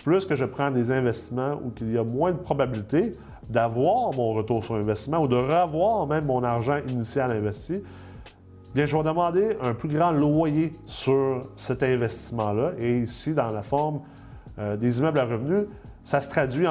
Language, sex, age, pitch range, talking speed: French, male, 30-49, 115-145 Hz, 175 wpm